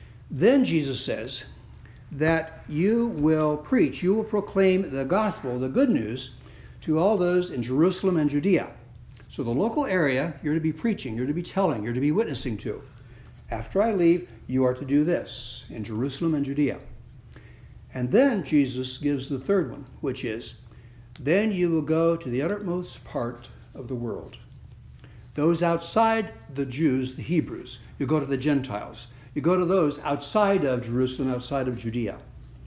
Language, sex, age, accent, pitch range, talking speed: English, male, 60-79, American, 125-180 Hz, 170 wpm